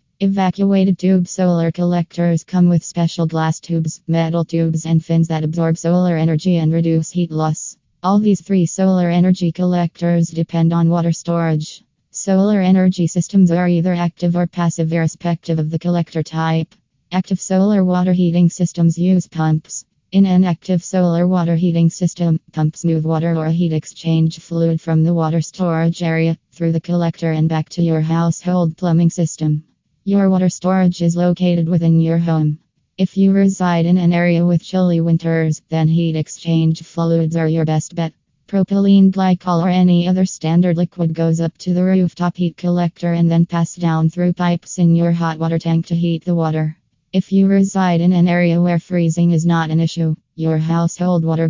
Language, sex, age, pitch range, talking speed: English, female, 20-39, 165-175 Hz, 175 wpm